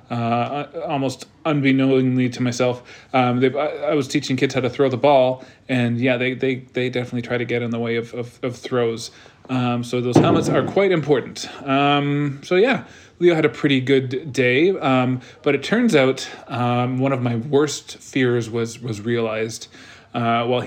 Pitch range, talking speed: 115-135 Hz, 185 wpm